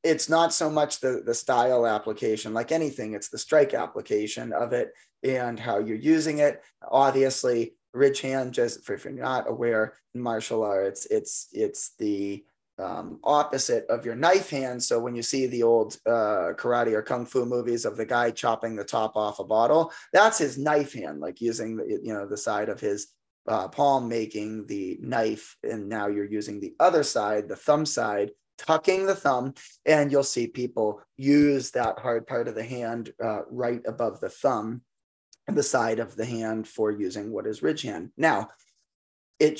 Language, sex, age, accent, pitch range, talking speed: English, male, 20-39, American, 110-145 Hz, 190 wpm